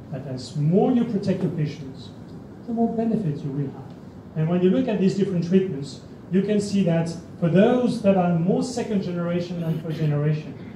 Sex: male